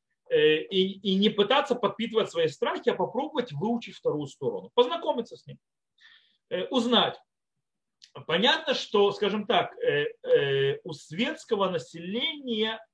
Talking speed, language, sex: 105 wpm, Russian, male